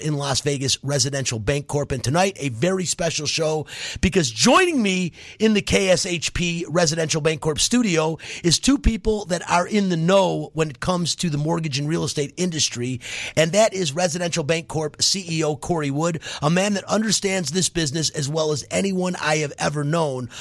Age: 40-59